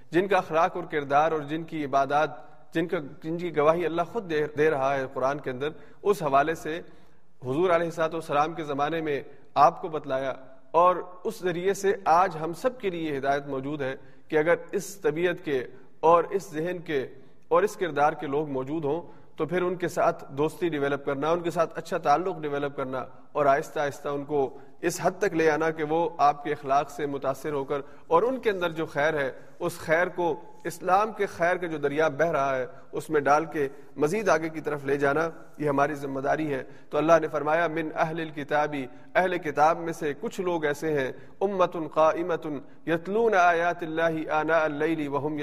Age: 40-59